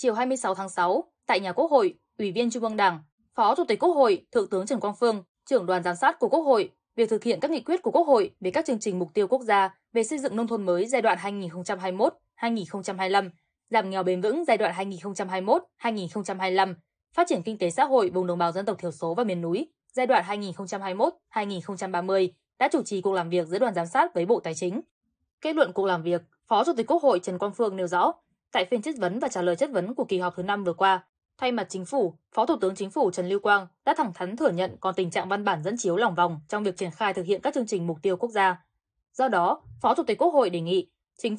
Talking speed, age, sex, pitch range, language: 255 wpm, 10-29, female, 180-230 Hz, Vietnamese